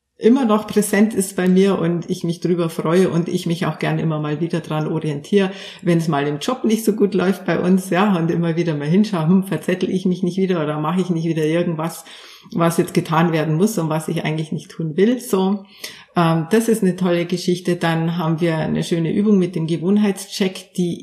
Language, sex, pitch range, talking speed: German, female, 170-195 Hz, 225 wpm